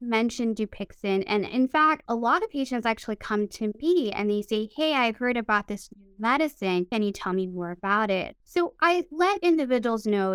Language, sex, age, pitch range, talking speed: English, female, 20-39, 195-275 Hz, 205 wpm